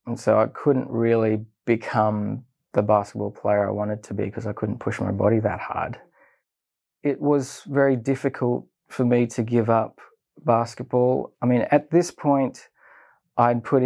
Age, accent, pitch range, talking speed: 20-39, Australian, 110-125 Hz, 165 wpm